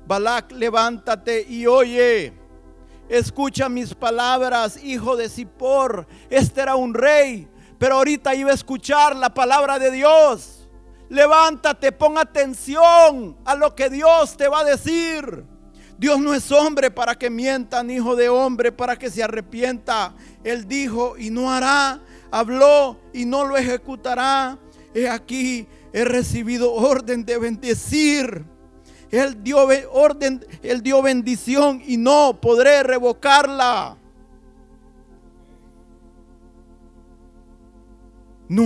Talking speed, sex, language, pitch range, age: 120 wpm, male, Spanish, 205-270 Hz, 50-69